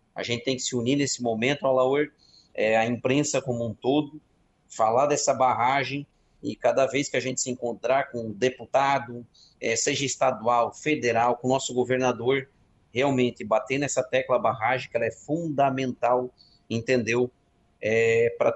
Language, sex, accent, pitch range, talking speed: Portuguese, male, Brazilian, 115-140 Hz, 160 wpm